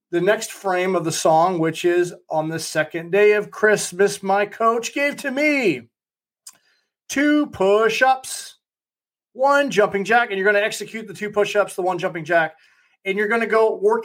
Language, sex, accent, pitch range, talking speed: English, male, American, 160-210 Hz, 180 wpm